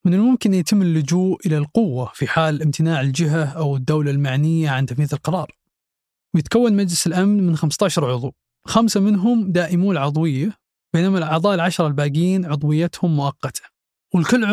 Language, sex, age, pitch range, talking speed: Arabic, male, 20-39, 150-185 Hz, 140 wpm